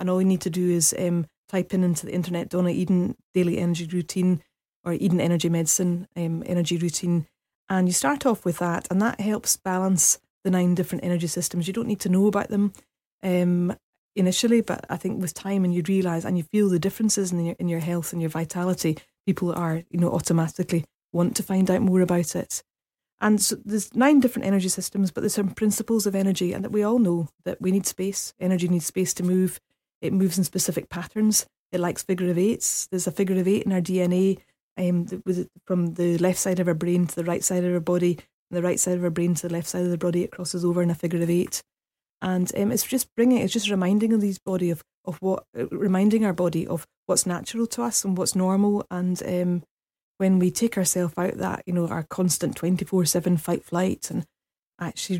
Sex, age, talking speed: female, 30-49, 225 wpm